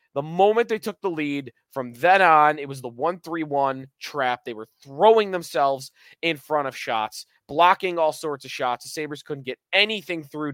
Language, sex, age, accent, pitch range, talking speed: English, male, 20-39, American, 125-175 Hz, 190 wpm